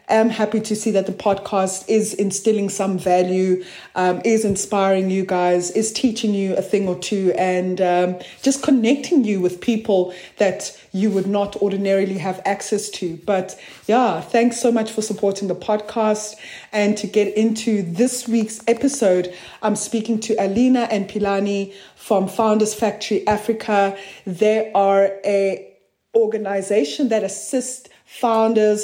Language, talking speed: English, 150 wpm